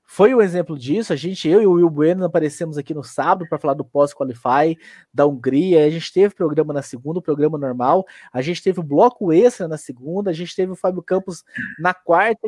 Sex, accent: male, Brazilian